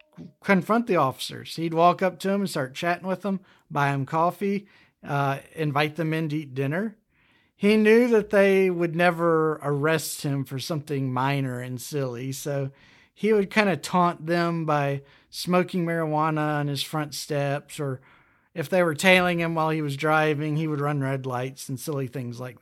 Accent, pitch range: American, 145-190 Hz